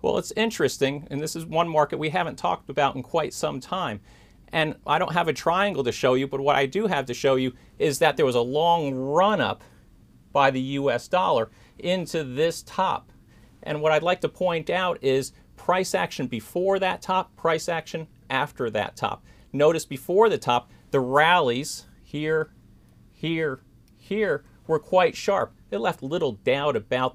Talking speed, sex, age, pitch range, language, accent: 180 wpm, male, 40-59, 130-170 Hz, English, American